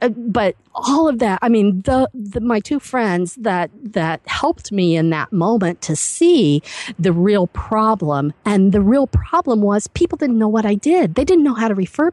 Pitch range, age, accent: 185-255 Hz, 50-69, American